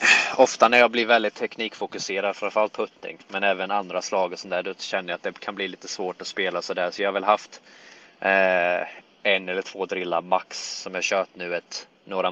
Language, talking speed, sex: Swedish, 220 wpm, male